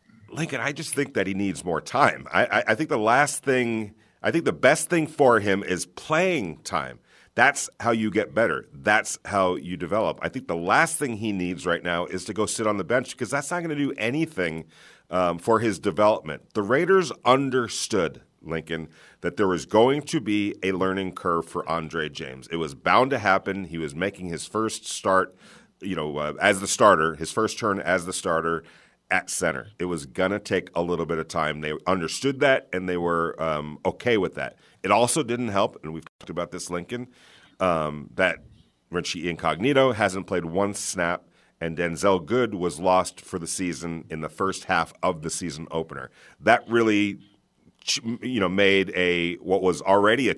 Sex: male